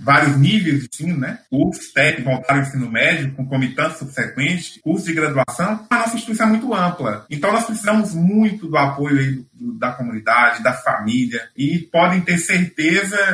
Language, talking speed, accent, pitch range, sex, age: Portuguese, 180 wpm, Brazilian, 135-185 Hz, male, 20-39